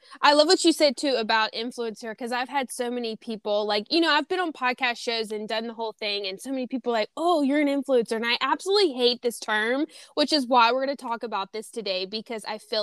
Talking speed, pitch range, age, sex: 255 wpm, 210-245 Hz, 10-29, female